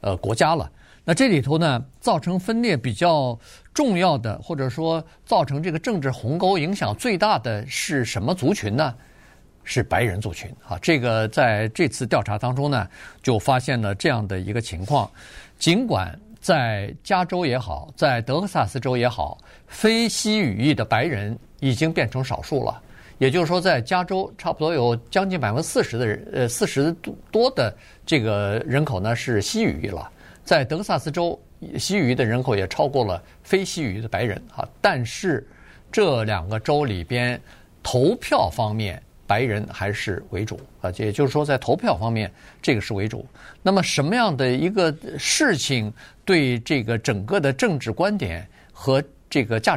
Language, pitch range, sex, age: Chinese, 110-160 Hz, male, 50-69